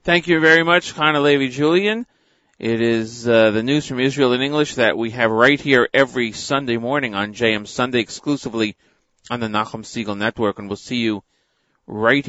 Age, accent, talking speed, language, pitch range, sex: 40-59, American, 175 wpm, English, 105-135 Hz, male